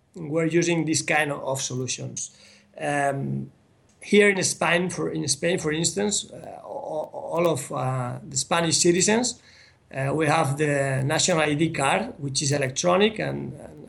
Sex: male